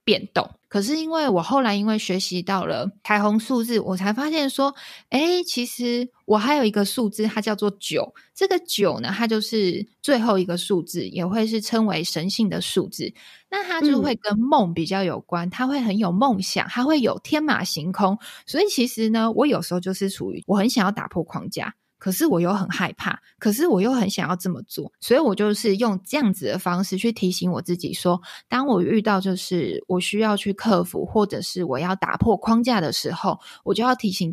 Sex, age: female, 20-39